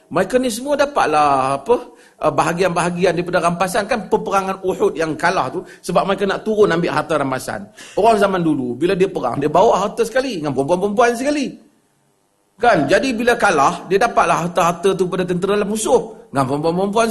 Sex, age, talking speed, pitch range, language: male, 40-59, 170 wpm, 180-245 Hz, Malay